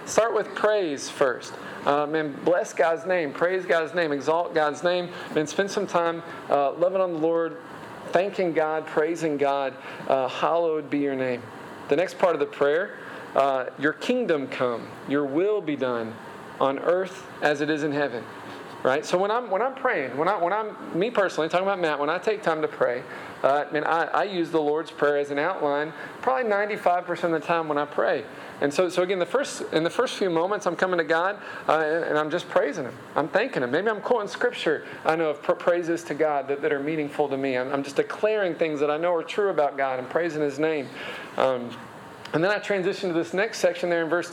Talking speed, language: 220 wpm, English